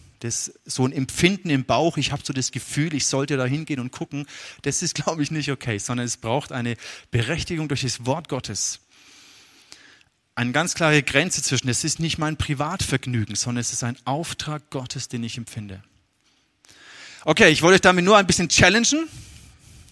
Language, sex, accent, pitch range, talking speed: German, male, German, 125-155 Hz, 180 wpm